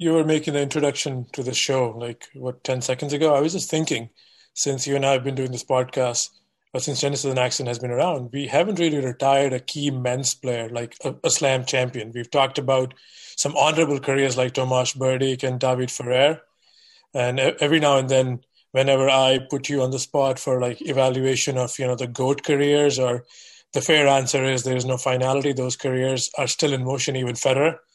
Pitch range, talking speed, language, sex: 130-145 Hz, 210 wpm, English, male